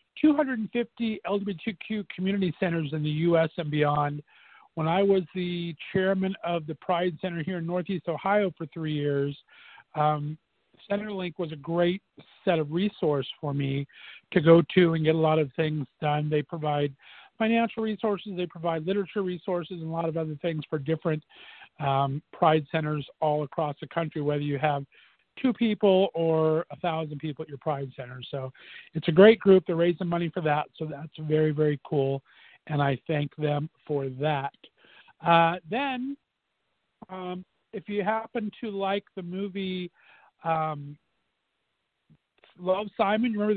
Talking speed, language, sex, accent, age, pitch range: 160 wpm, English, male, American, 50-69, 155-190 Hz